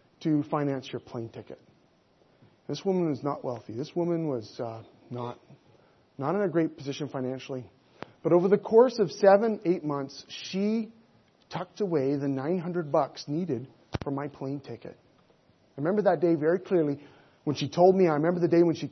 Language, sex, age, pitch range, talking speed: English, male, 30-49, 140-180 Hz, 180 wpm